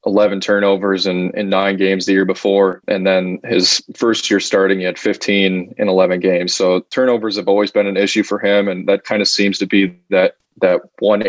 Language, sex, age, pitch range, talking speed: English, male, 20-39, 90-100 Hz, 215 wpm